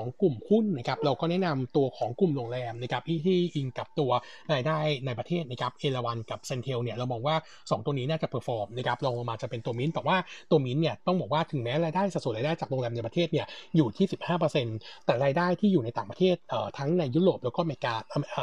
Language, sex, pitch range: Thai, male, 125-160 Hz